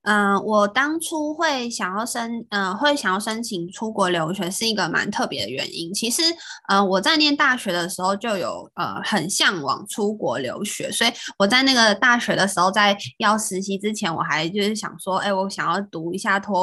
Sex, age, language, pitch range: female, 20-39, Chinese, 185-235 Hz